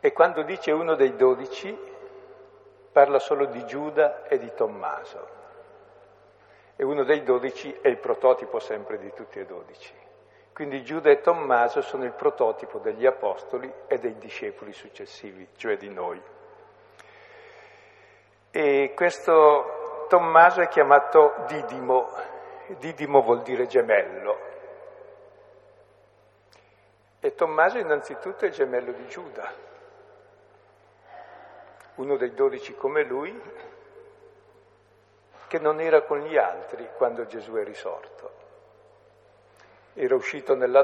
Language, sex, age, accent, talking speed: Italian, male, 60-79, native, 115 wpm